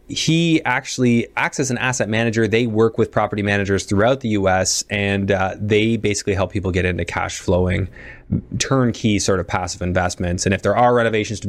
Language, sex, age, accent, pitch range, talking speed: English, male, 20-39, American, 95-125 Hz, 190 wpm